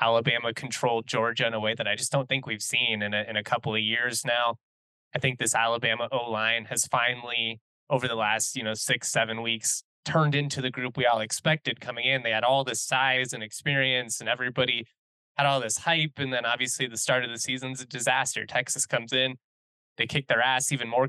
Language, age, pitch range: English, 20-39, 115-130 Hz